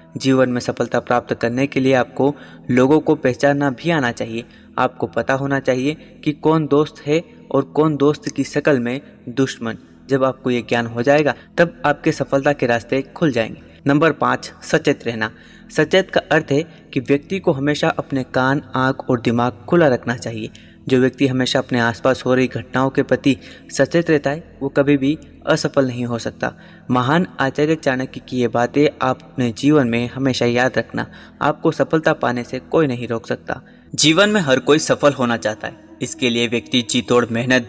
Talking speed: 185 wpm